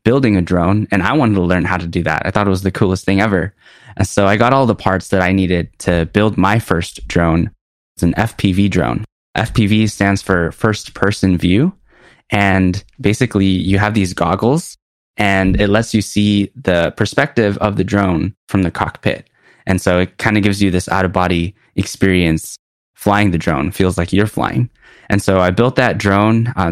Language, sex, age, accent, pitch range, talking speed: English, male, 20-39, American, 90-105 Hz, 200 wpm